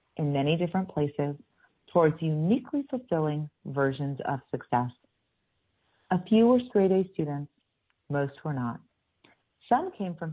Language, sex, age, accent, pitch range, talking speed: English, female, 40-59, American, 135-180 Hz, 130 wpm